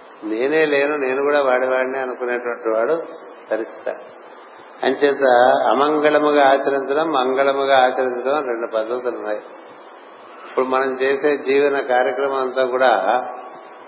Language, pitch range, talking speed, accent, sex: Telugu, 120-140 Hz, 90 wpm, native, male